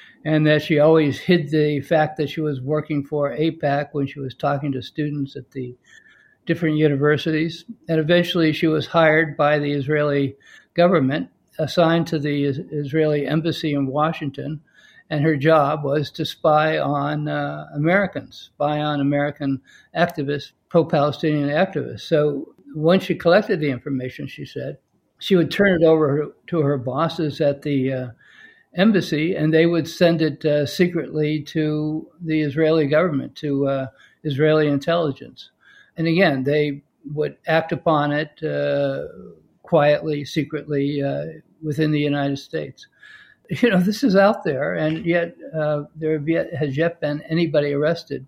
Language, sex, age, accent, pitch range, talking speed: English, male, 60-79, American, 145-165 Hz, 150 wpm